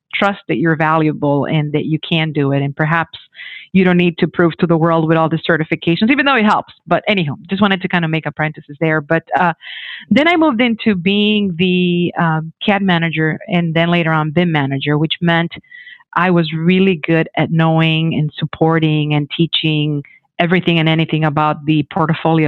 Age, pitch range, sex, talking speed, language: 40-59, 155-185 Hz, female, 195 wpm, English